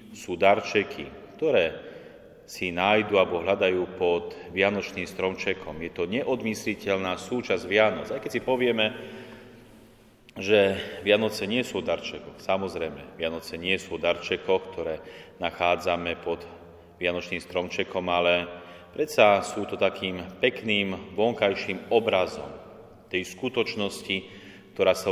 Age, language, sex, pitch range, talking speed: 30-49, Slovak, male, 90-105 Hz, 110 wpm